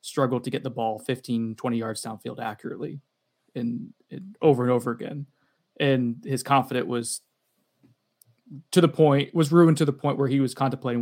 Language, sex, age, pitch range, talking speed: English, male, 20-39, 120-145 Hz, 175 wpm